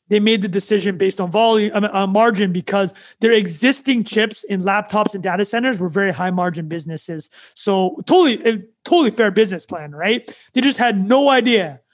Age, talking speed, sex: 30-49, 175 wpm, male